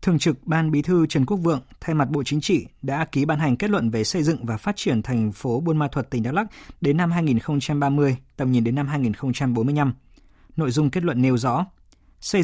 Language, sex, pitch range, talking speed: Vietnamese, male, 125-160 Hz, 230 wpm